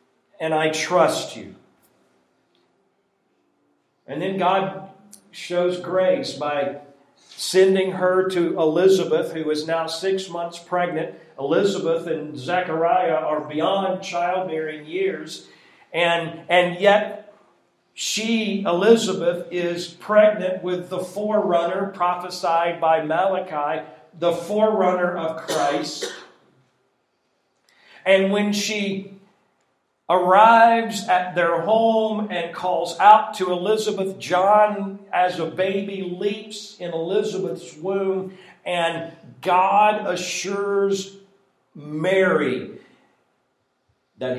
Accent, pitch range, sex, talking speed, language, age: American, 150-190 Hz, male, 95 wpm, English, 50-69